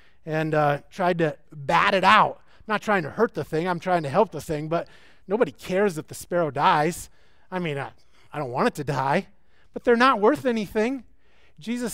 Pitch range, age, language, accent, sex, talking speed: 160-225 Hz, 30-49, English, American, male, 205 wpm